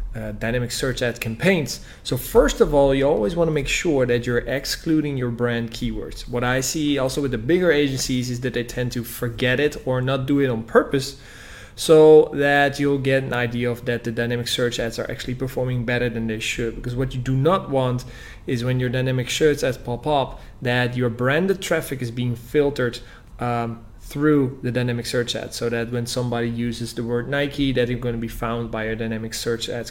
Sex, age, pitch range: male, 20-39, 120-140 Hz